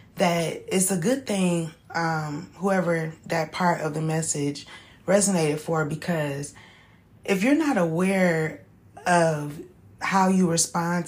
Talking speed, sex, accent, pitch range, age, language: 125 wpm, female, American, 155-180 Hz, 20-39, English